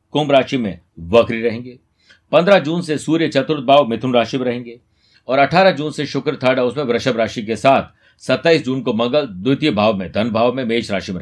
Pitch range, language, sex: 110-150 Hz, Hindi, male